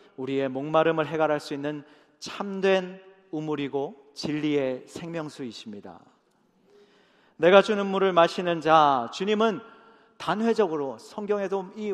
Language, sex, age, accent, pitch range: Korean, male, 40-59, native, 150-205 Hz